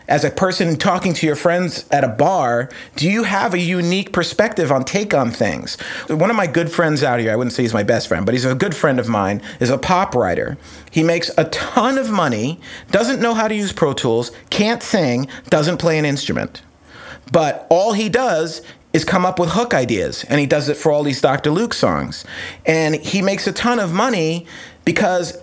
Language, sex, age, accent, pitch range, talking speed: English, male, 40-59, American, 135-195 Hz, 215 wpm